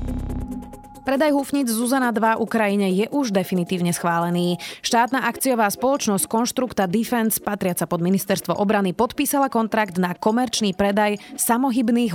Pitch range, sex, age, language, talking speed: 175-235 Hz, female, 30-49, Slovak, 120 wpm